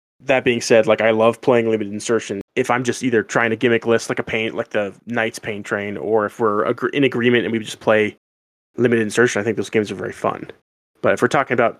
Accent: American